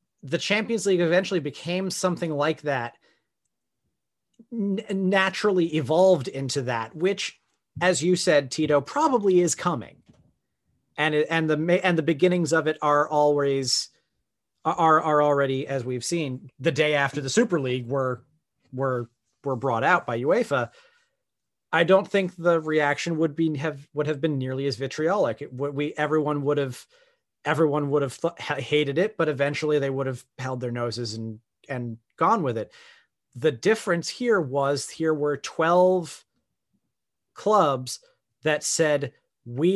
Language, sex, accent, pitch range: English, male, American, 135-170 Hz